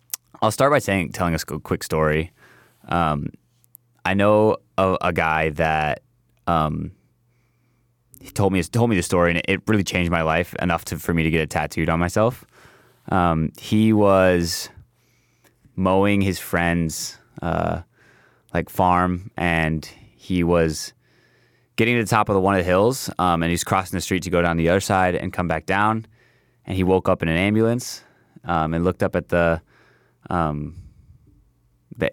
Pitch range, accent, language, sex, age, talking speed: 85-110 Hz, American, English, male, 20-39, 175 wpm